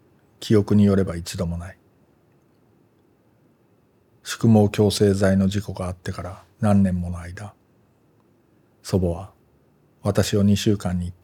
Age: 40-59